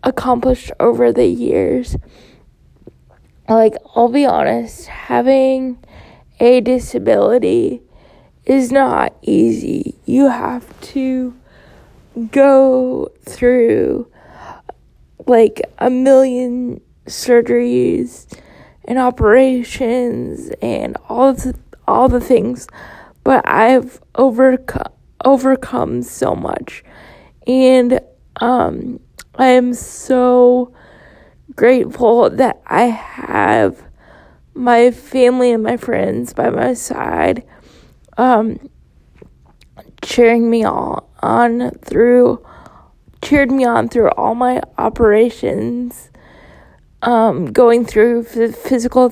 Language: English